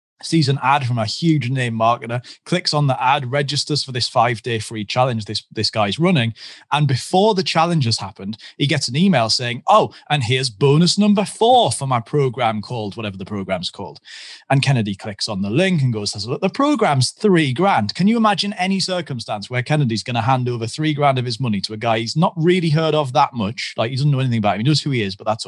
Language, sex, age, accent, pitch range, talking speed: English, male, 30-49, British, 115-155 Hz, 235 wpm